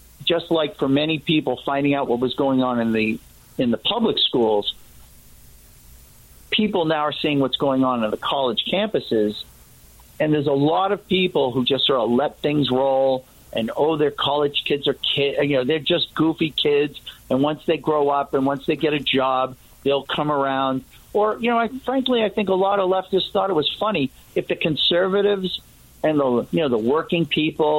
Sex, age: male, 50-69